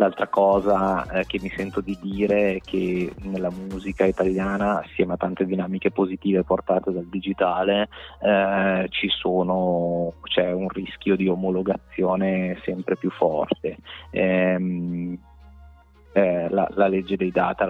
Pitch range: 90-100 Hz